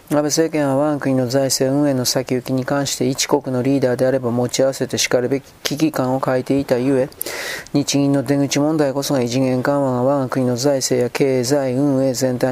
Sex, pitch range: male, 125-140 Hz